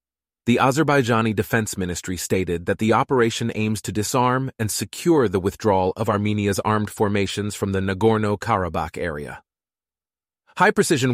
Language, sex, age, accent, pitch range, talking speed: English, male, 30-49, American, 100-125 Hz, 140 wpm